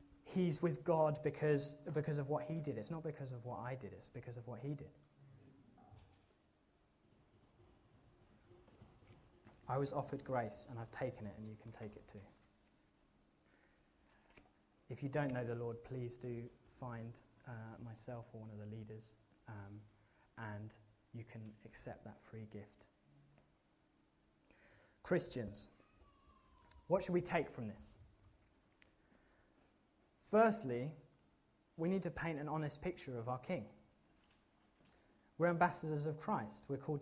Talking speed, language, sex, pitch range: 135 wpm, English, male, 110-155 Hz